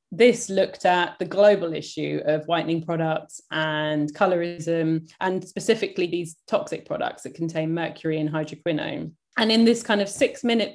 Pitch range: 165-195 Hz